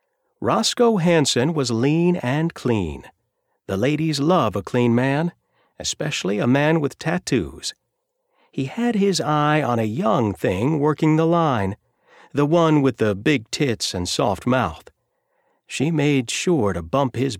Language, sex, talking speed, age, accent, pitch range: English, male, 150 wpm, 50-69, American, 110-165 Hz